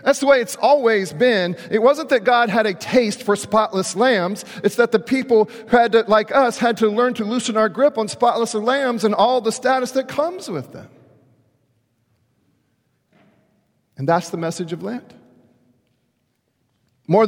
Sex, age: male, 40-59